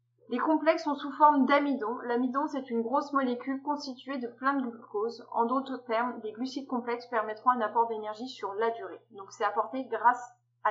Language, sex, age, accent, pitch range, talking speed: French, female, 20-39, French, 230-285 Hz, 190 wpm